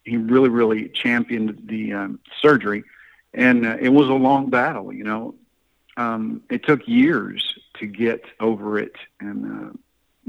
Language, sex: English, male